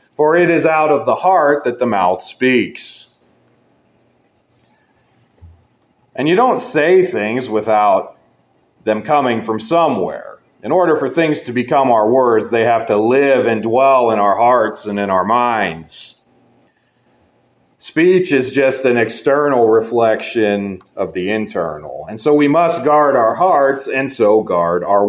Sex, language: male, English